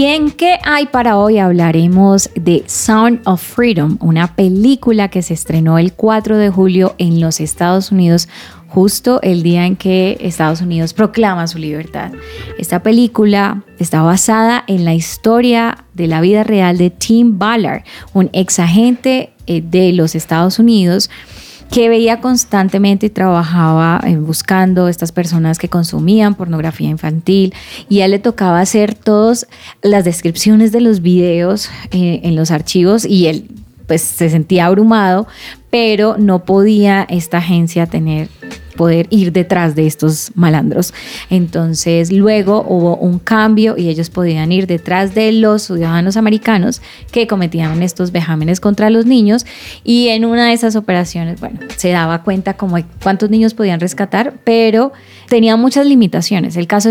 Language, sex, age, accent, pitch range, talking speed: Spanish, female, 20-39, Colombian, 170-220 Hz, 150 wpm